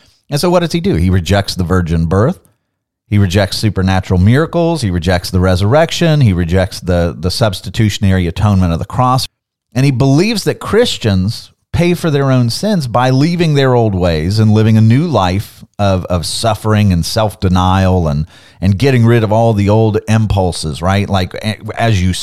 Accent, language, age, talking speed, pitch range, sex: American, English, 30-49, 180 wpm, 95-120 Hz, male